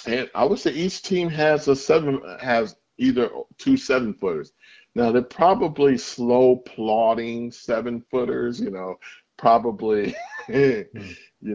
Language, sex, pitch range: English, male, 95-125 Hz